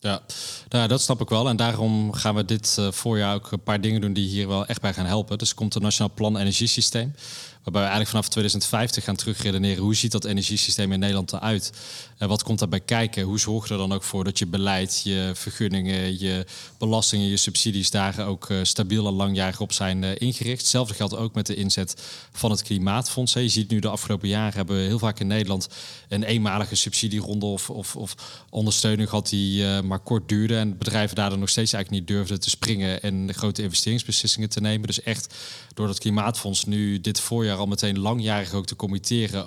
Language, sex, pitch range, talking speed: Dutch, male, 100-110 Hz, 210 wpm